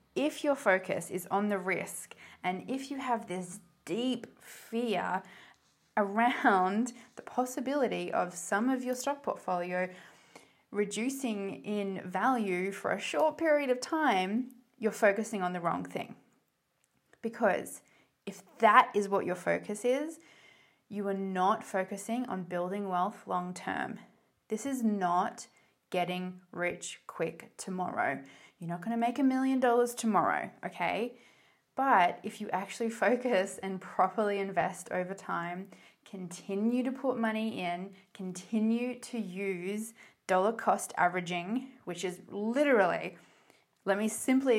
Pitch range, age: 185-245 Hz, 20-39